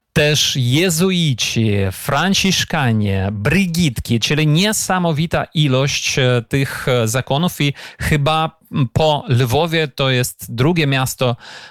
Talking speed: 85 wpm